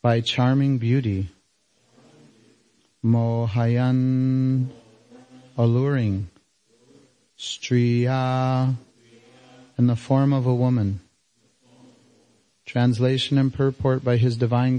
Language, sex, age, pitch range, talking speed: English, male, 30-49, 115-135 Hz, 75 wpm